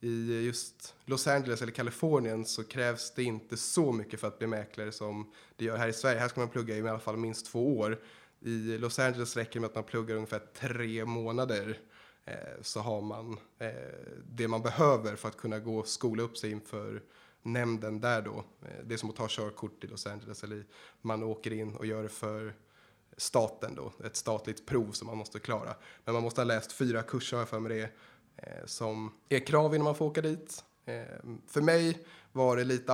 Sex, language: male, Swedish